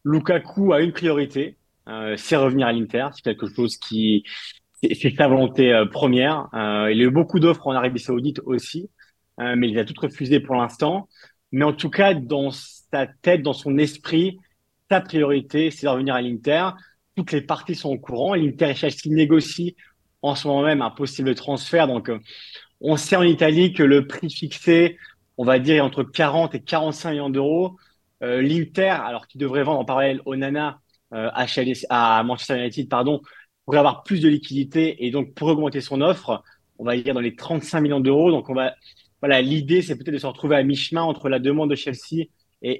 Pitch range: 130-160 Hz